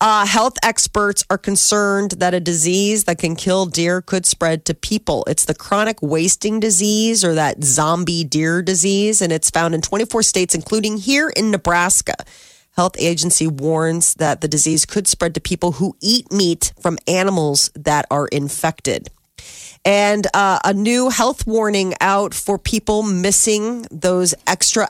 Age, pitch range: 30-49, 160-205 Hz